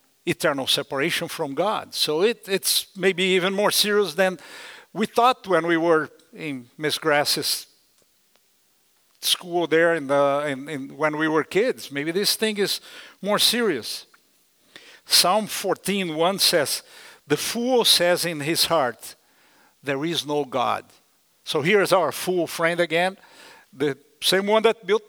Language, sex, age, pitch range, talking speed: English, male, 50-69, 155-195 Hz, 145 wpm